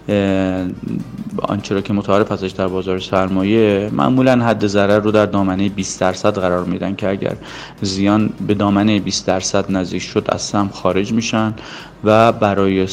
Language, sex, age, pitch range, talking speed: Persian, male, 30-49, 95-110 Hz, 155 wpm